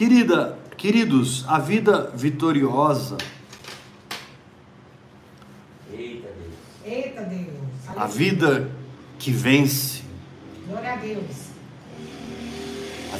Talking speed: 45 wpm